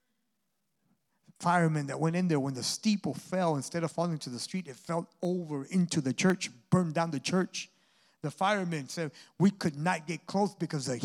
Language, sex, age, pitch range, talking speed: English, male, 60-79, 145-195 Hz, 190 wpm